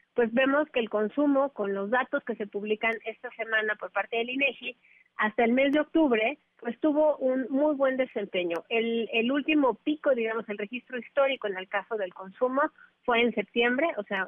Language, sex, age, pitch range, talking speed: Spanish, female, 40-59, 210-255 Hz, 195 wpm